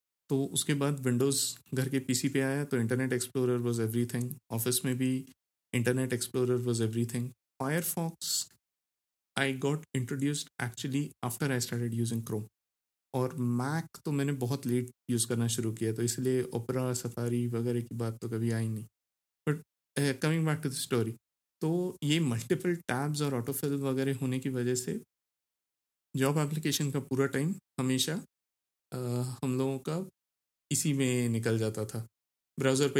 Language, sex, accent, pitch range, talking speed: Hindi, male, native, 120-140 Hz, 155 wpm